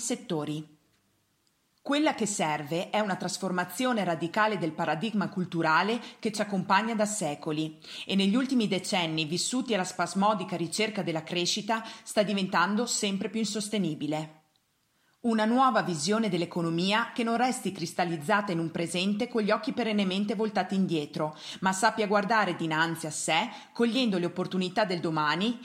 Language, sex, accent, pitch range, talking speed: Italian, female, native, 170-220 Hz, 140 wpm